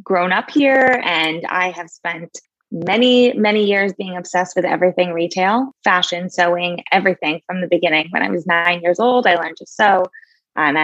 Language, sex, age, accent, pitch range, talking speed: English, female, 20-39, American, 175-215 Hz, 175 wpm